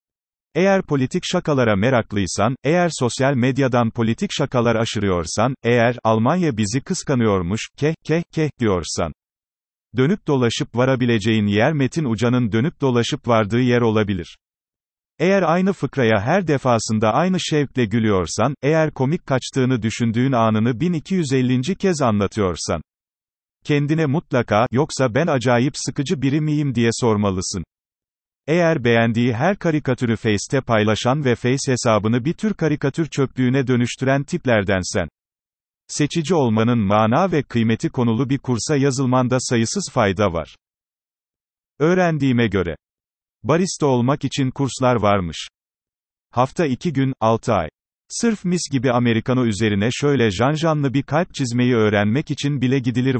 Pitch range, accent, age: 110-145 Hz, native, 40-59